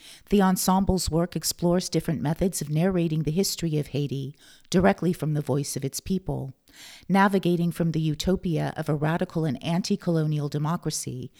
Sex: female